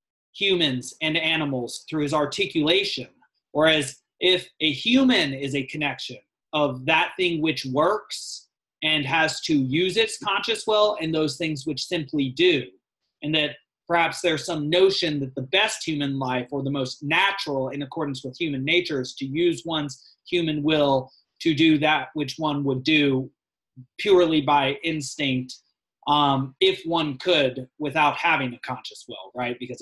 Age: 30-49